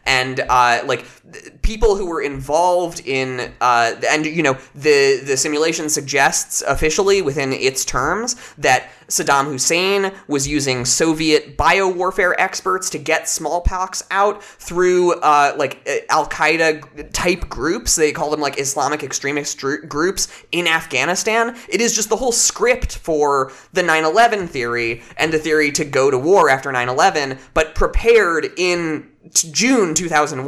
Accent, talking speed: American, 140 wpm